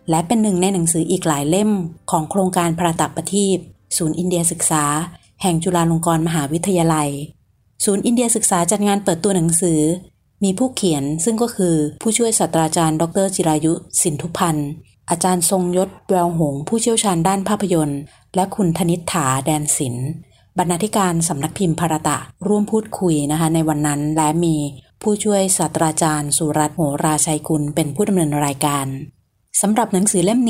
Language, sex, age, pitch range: Thai, female, 30-49, 150-185 Hz